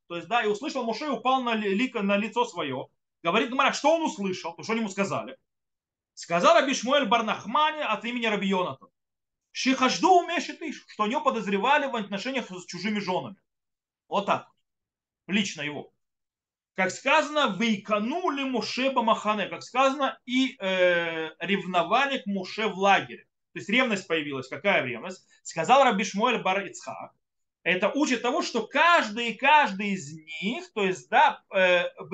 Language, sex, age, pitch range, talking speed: Russian, male, 30-49, 175-255 Hz, 155 wpm